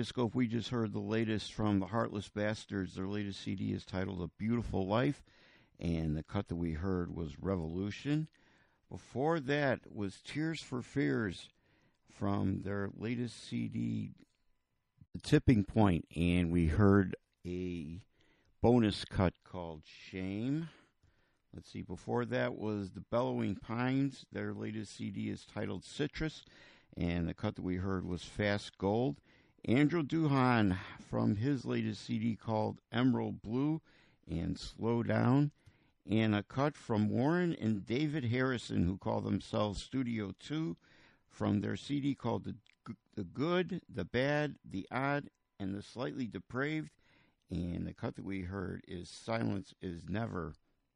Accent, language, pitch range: American, English, 95-125 Hz